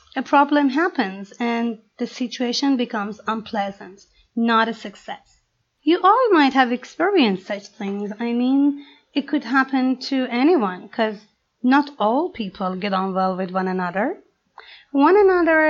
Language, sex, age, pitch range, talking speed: Persian, female, 30-49, 220-300 Hz, 140 wpm